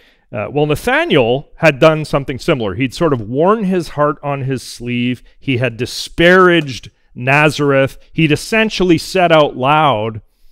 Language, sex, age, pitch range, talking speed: English, male, 40-59, 110-150 Hz, 145 wpm